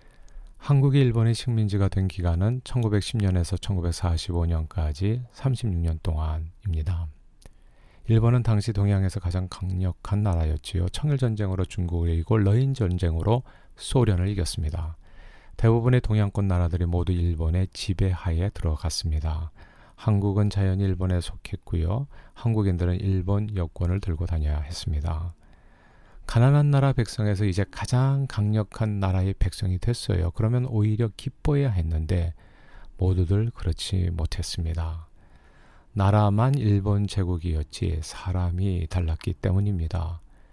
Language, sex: Korean, male